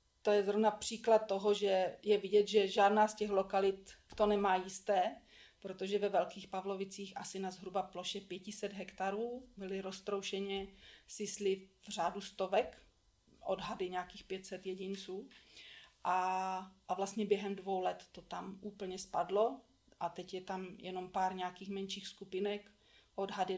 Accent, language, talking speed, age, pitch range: native, Czech, 145 wpm, 40-59, 190-210 Hz